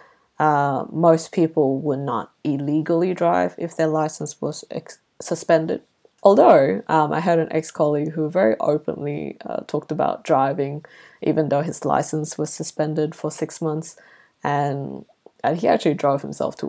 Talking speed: 150 wpm